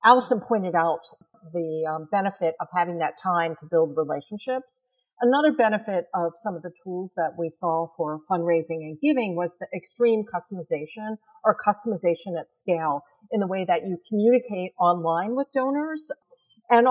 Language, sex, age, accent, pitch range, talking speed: English, female, 50-69, American, 175-235 Hz, 160 wpm